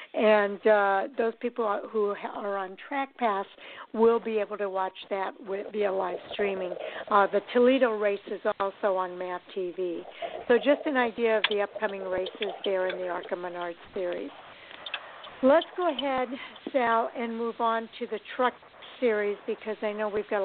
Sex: female